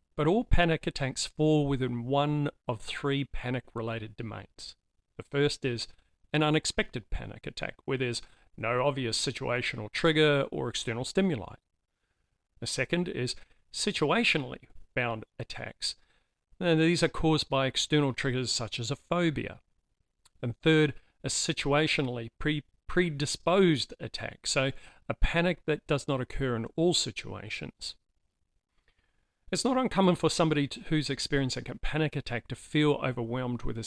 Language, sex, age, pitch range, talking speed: English, male, 50-69, 120-155 Hz, 135 wpm